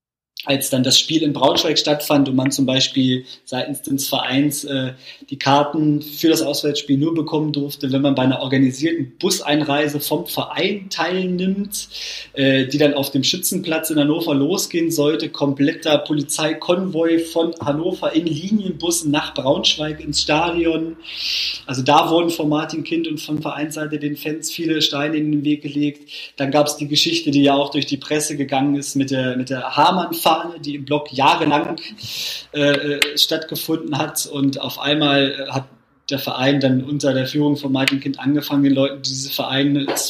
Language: German